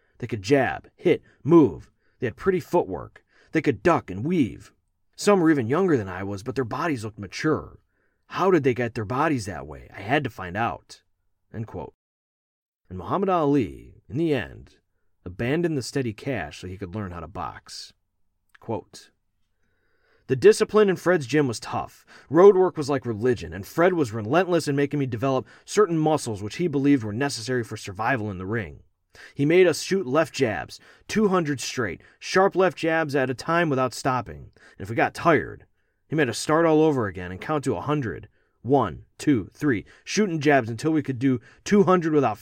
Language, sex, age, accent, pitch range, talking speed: English, male, 40-59, American, 110-165 Hz, 185 wpm